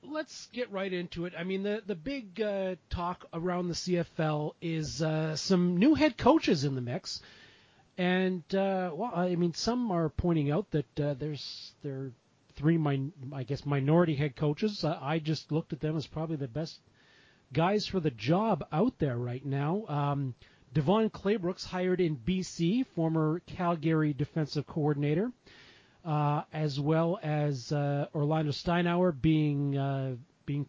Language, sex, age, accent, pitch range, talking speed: English, male, 40-59, American, 140-180 Hz, 160 wpm